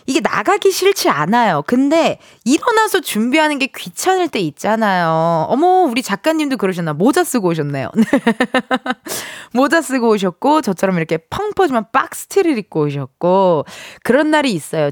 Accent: native